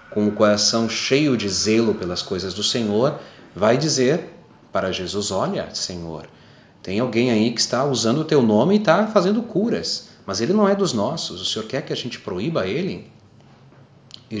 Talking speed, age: 185 wpm, 30-49